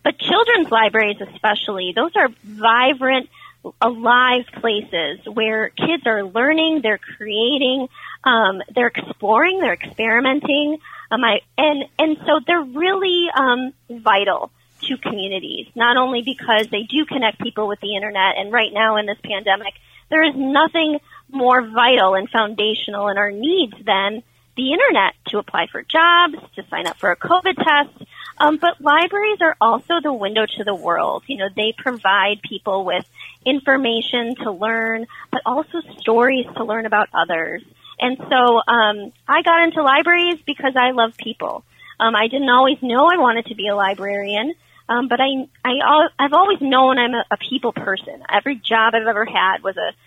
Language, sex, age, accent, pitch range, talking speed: English, female, 30-49, American, 220-290 Hz, 165 wpm